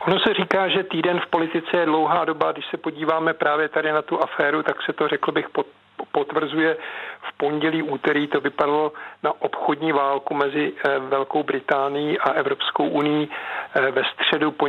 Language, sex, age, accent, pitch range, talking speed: Czech, male, 50-69, native, 140-155 Hz, 170 wpm